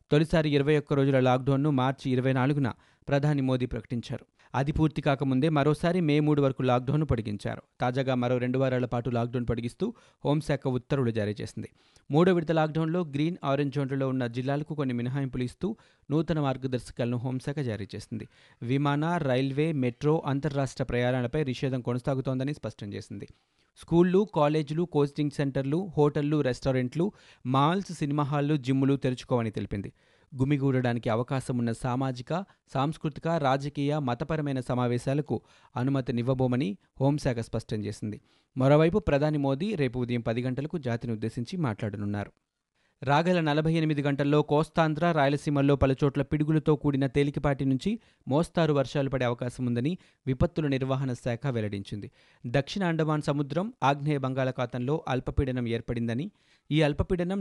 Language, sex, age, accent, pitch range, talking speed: Telugu, male, 30-49, native, 125-150 Hz, 120 wpm